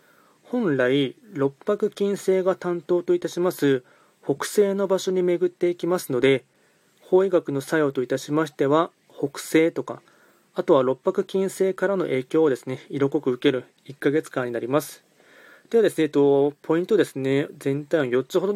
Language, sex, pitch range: Japanese, male, 135-180 Hz